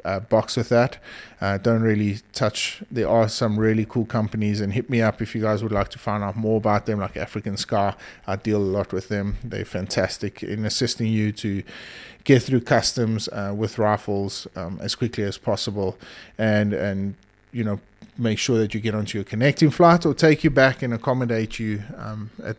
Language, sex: English, male